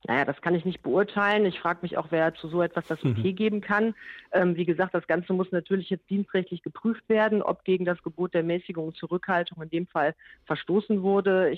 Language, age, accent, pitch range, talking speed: German, 40-59, German, 170-195 Hz, 220 wpm